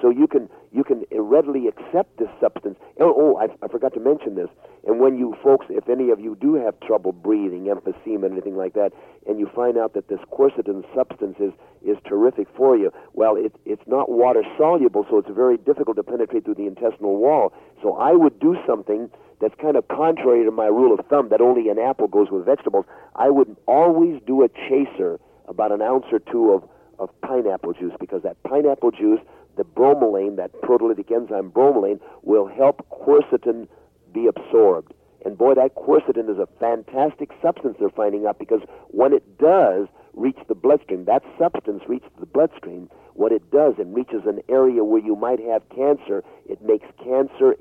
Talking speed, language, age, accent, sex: 190 wpm, English, 50-69, American, male